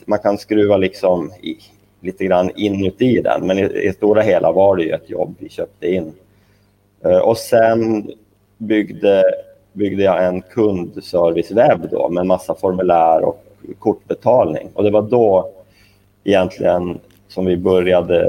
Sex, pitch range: male, 95-105 Hz